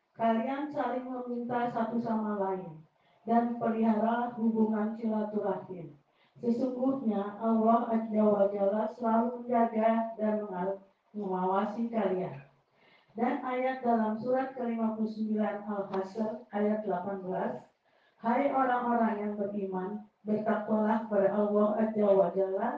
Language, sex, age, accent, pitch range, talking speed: Indonesian, female, 40-59, native, 200-240 Hz, 90 wpm